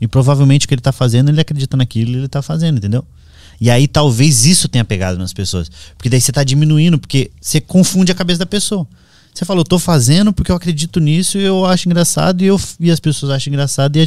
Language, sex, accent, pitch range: Portuguese, male, Brazilian, 115-165 Hz